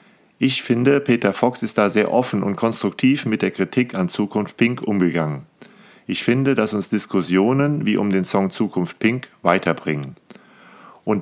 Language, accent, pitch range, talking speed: German, German, 95-120 Hz, 160 wpm